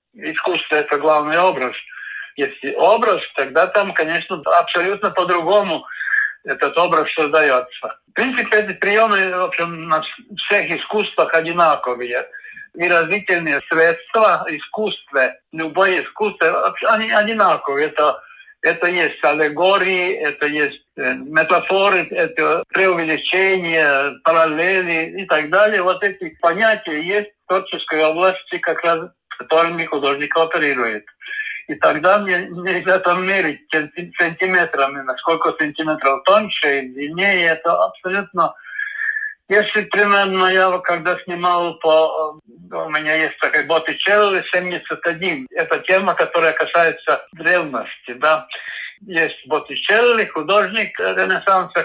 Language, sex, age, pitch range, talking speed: Russian, male, 60-79, 160-195 Hz, 105 wpm